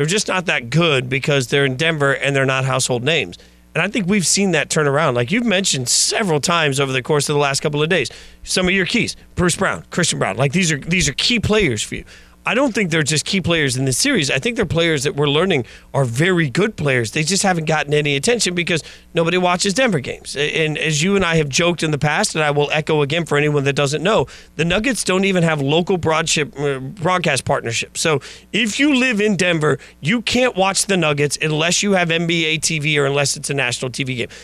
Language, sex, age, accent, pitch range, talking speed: English, male, 40-59, American, 145-210 Hz, 240 wpm